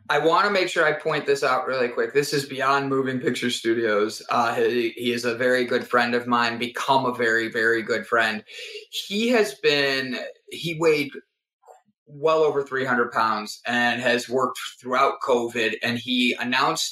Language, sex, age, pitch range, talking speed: English, male, 20-39, 120-170 Hz, 175 wpm